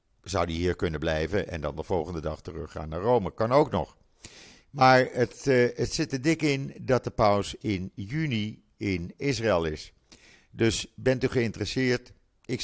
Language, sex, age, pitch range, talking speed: Dutch, male, 50-69, 90-120 Hz, 175 wpm